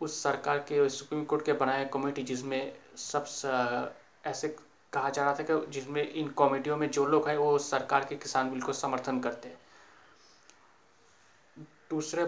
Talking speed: 170 wpm